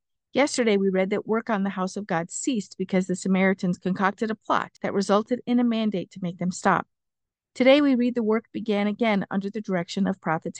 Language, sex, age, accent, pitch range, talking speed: English, female, 50-69, American, 185-230 Hz, 215 wpm